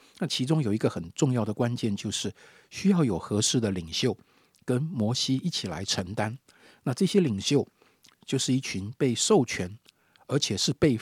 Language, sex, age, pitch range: Chinese, male, 50-69, 105-150 Hz